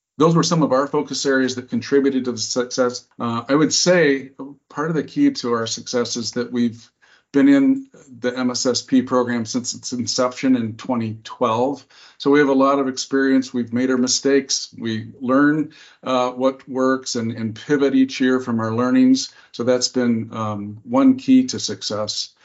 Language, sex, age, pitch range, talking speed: English, male, 50-69, 120-135 Hz, 180 wpm